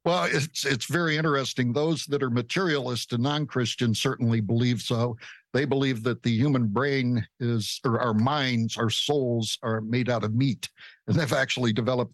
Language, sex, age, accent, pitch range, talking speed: English, male, 60-79, American, 120-150 Hz, 175 wpm